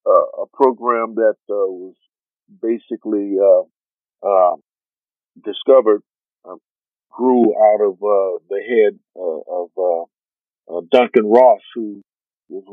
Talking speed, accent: 120 wpm, American